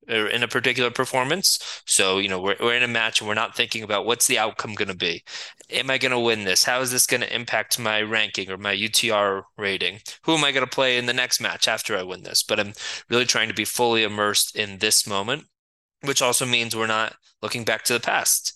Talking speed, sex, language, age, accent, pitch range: 245 wpm, male, English, 20-39, American, 100-120 Hz